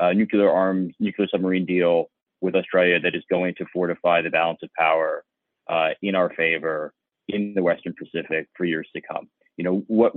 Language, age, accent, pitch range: English, 30-49, American, 85-95 Hz